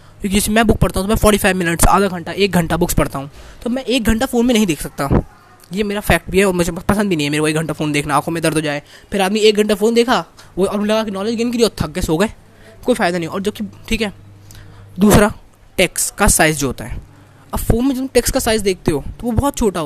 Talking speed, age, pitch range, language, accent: 280 wpm, 20-39, 170-225 Hz, Hindi, native